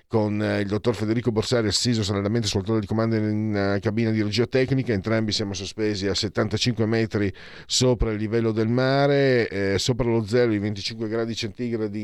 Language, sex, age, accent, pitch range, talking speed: Italian, male, 40-59, native, 100-120 Hz, 175 wpm